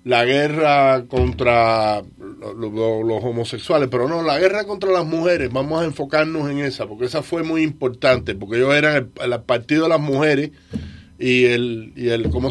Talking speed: 175 wpm